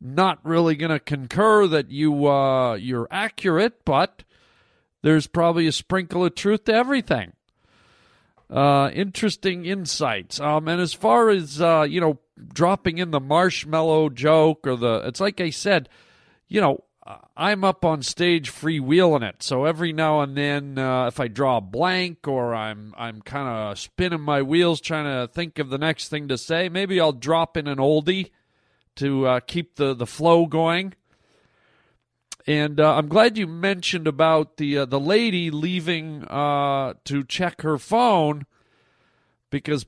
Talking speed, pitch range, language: 160 wpm, 140-175 Hz, English